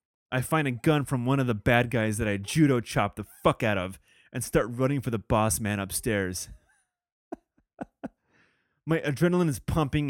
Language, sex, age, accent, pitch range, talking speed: English, male, 30-49, American, 120-155 Hz, 170 wpm